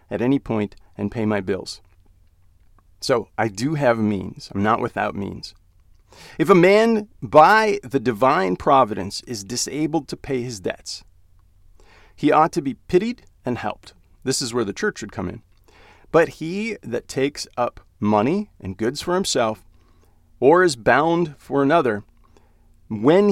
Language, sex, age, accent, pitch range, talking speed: English, male, 40-59, American, 90-135 Hz, 155 wpm